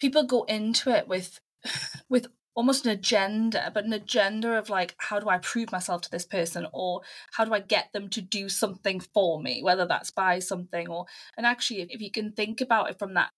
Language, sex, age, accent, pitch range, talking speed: English, female, 20-39, British, 200-250 Hz, 220 wpm